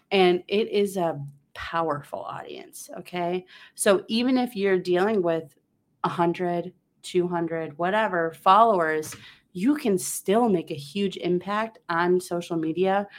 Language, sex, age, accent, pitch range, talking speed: English, female, 30-49, American, 165-205 Hz, 125 wpm